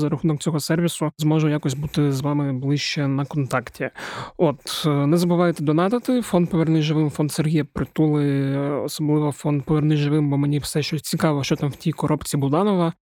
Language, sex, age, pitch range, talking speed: Ukrainian, male, 20-39, 145-165 Hz, 170 wpm